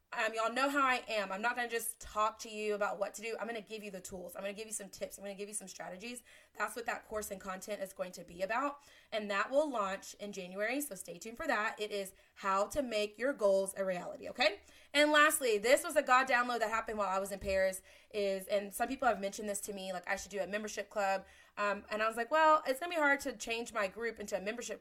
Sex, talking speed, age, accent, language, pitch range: female, 290 wpm, 20-39, American, English, 195-240 Hz